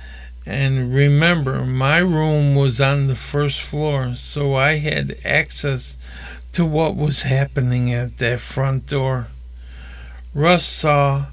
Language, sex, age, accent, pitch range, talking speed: English, male, 50-69, American, 105-150 Hz, 120 wpm